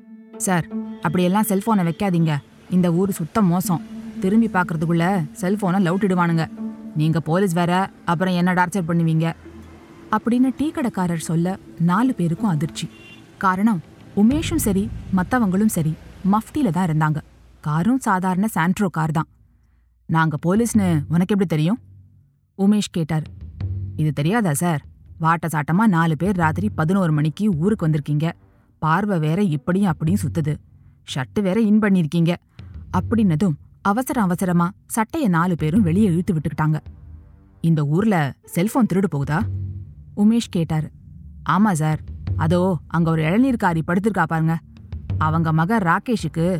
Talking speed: 115 wpm